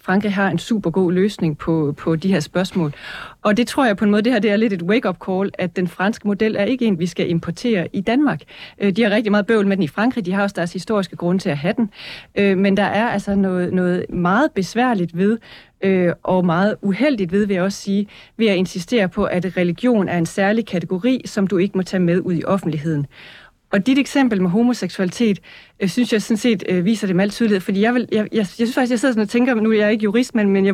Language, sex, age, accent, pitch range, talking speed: Danish, female, 30-49, native, 180-220 Hz, 255 wpm